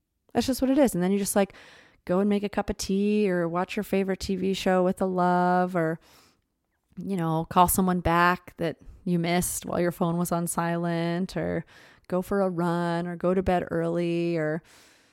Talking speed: 205 wpm